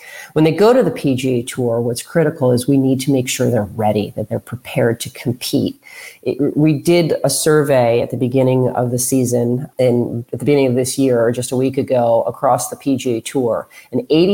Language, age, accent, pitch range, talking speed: English, 40-59, American, 125-150 Hz, 210 wpm